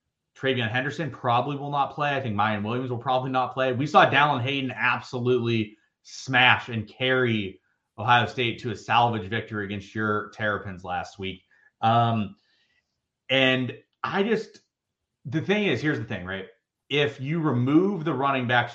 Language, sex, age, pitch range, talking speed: English, male, 30-49, 110-140 Hz, 160 wpm